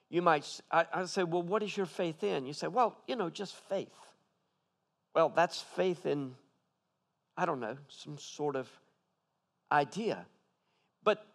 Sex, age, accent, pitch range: male, 50-69, American, 170-210 Hz